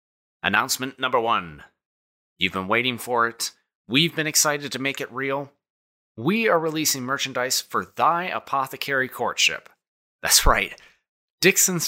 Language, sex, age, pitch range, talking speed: English, male, 30-49, 105-160 Hz, 130 wpm